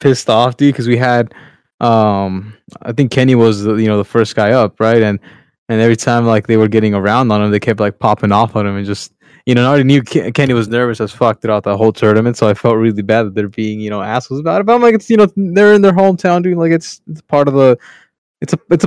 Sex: male